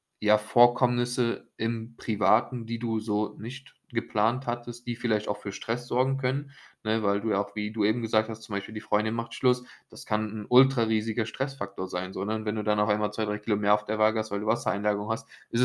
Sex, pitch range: male, 105-120 Hz